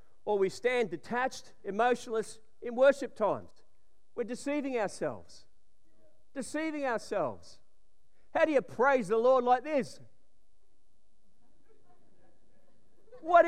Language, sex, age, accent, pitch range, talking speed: English, male, 40-59, Australian, 245-310 Hz, 100 wpm